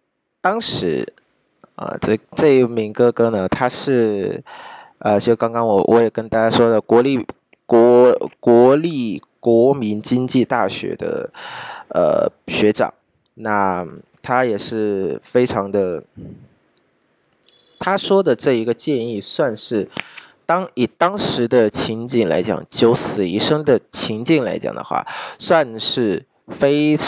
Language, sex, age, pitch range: Vietnamese, male, 20-39, 110-135 Hz